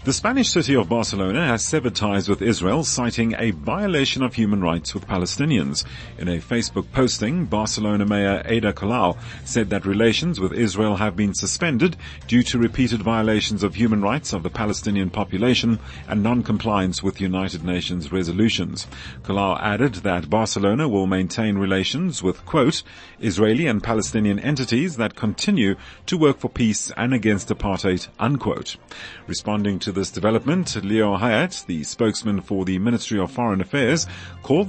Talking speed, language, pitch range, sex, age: 155 wpm, English, 95-120 Hz, male, 40-59